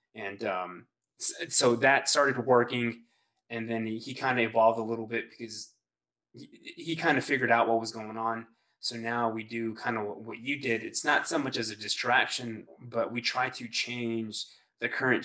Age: 20-39